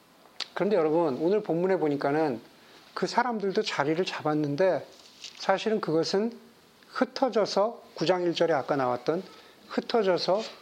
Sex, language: male, Korean